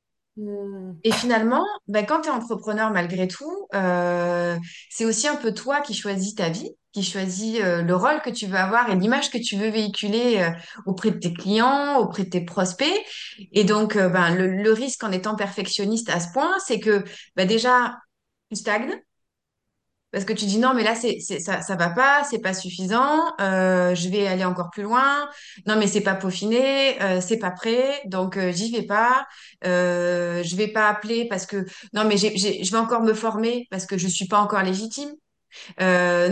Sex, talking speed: female, 205 wpm